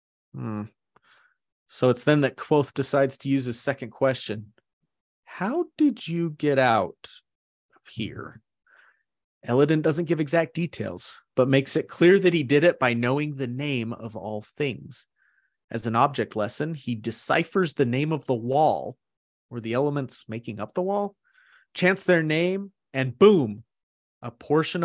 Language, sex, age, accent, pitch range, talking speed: English, male, 30-49, American, 115-155 Hz, 155 wpm